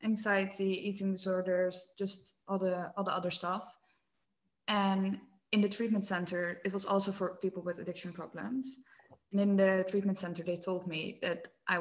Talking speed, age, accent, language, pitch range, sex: 170 wpm, 20-39, Dutch, English, 185-210 Hz, female